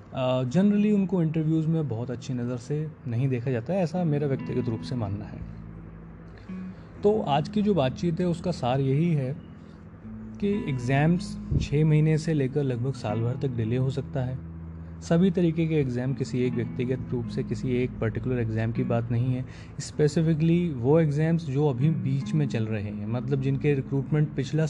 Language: Hindi